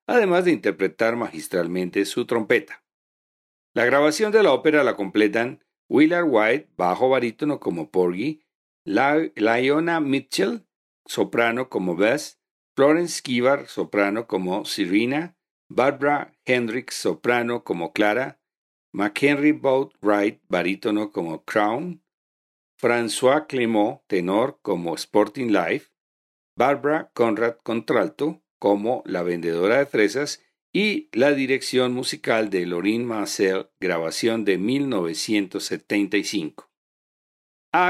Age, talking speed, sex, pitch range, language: 50-69, 105 wpm, male, 100-145 Hz, Spanish